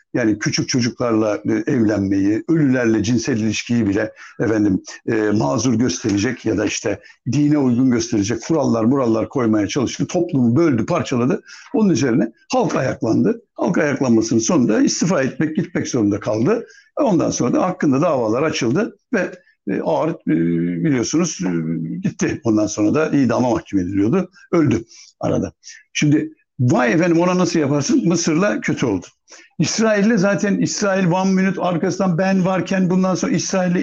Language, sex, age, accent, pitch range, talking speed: Turkish, male, 60-79, native, 125-185 Hz, 135 wpm